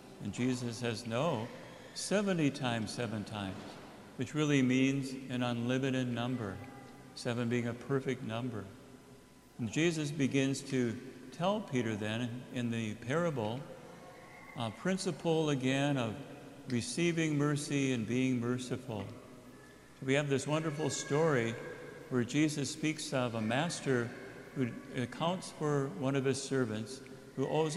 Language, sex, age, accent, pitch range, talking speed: English, male, 60-79, American, 120-145 Hz, 125 wpm